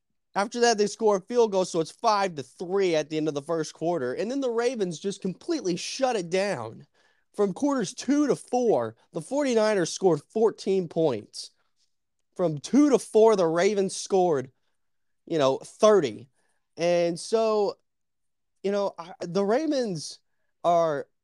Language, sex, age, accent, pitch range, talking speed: English, male, 20-39, American, 140-185 Hz, 155 wpm